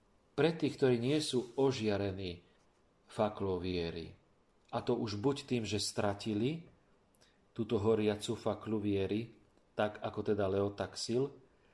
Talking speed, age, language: 120 wpm, 40-59, Slovak